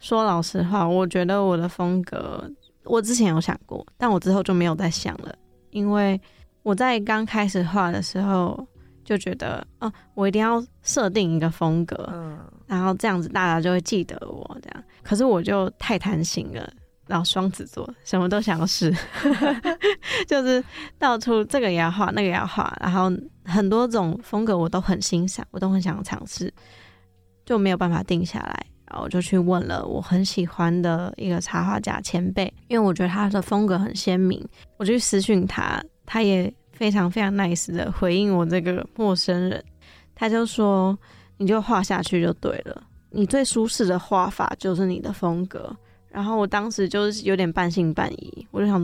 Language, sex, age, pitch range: Chinese, female, 20-39, 180-205 Hz